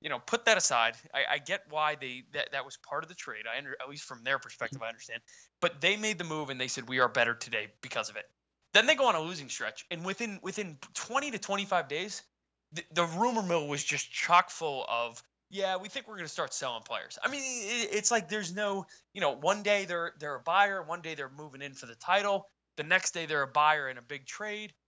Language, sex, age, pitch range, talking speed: English, male, 20-39, 125-190 Hz, 255 wpm